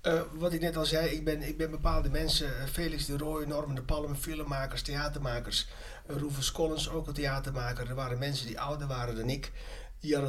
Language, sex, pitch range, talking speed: Dutch, male, 105-145 Hz, 200 wpm